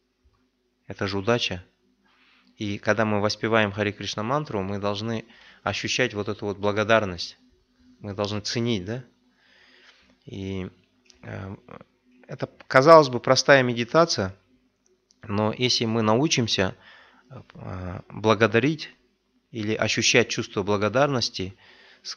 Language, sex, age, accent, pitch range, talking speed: Russian, male, 30-49, native, 100-125 Hz, 105 wpm